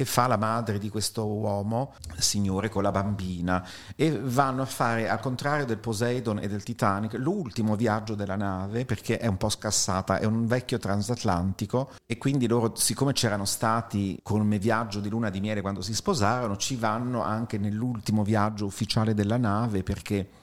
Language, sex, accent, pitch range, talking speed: Italian, male, native, 100-125 Hz, 170 wpm